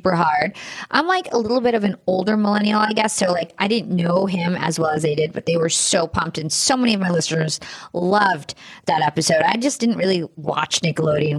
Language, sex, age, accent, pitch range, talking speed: English, female, 30-49, American, 180-245 Hz, 220 wpm